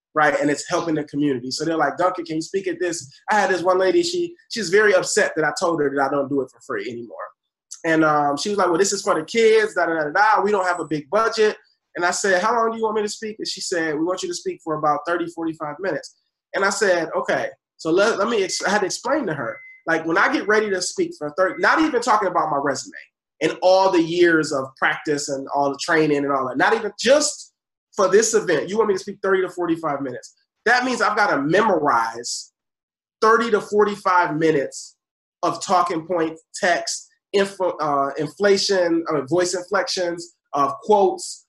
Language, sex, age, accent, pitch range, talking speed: English, male, 20-39, American, 160-215 Hz, 225 wpm